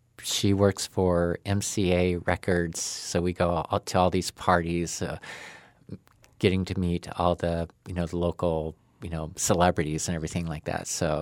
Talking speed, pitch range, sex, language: 165 wpm, 85-115 Hz, male, English